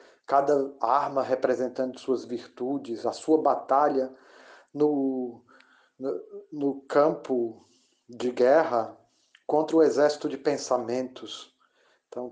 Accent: Brazilian